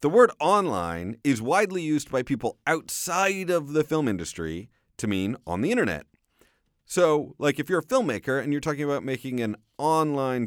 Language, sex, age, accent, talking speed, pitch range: English, male, 40-59, American, 180 wpm, 100-150 Hz